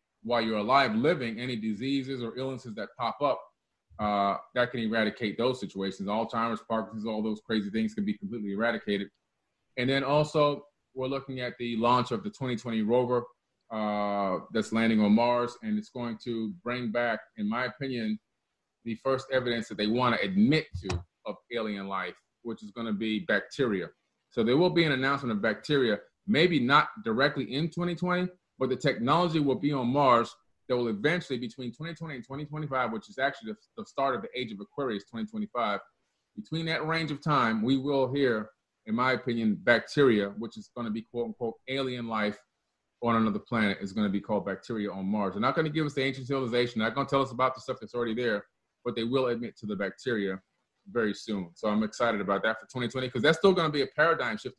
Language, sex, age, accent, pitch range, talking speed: English, male, 30-49, American, 110-140 Hz, 200 wpm